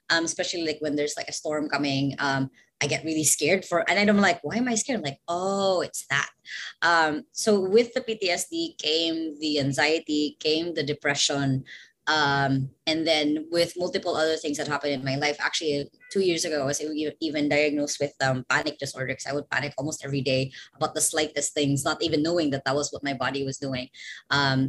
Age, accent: 20-39, native